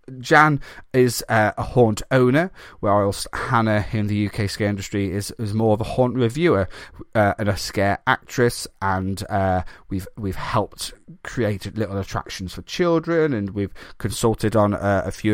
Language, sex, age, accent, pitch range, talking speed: English, male, 30-49, British, 100-130 Hz, 165 wpm